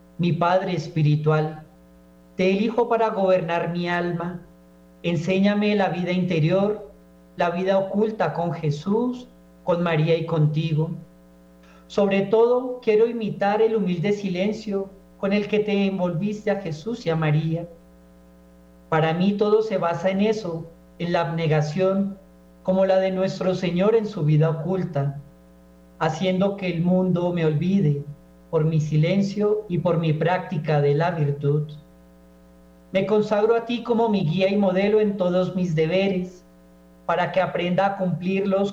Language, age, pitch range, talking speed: Spanish, 40-59, 155-195 Hz, 145 wpm